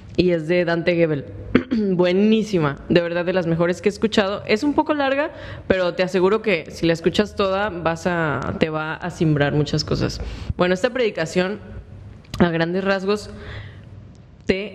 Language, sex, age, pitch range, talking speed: Spanish, female, 10-29, 155-185 Hz, 165 wpm